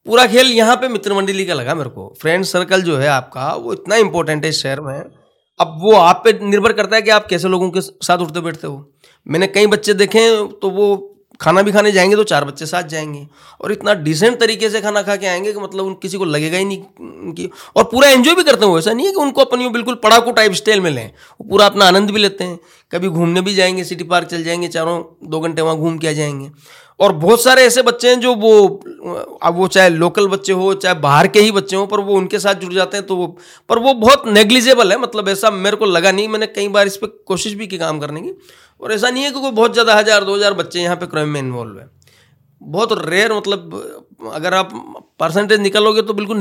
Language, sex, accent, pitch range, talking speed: Hindi, male, native, 165-210 Hz, 240 wpm